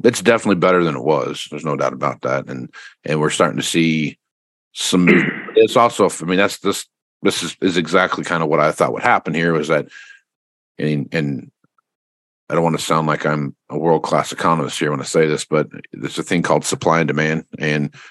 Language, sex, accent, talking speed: English, male, American, 210 wpm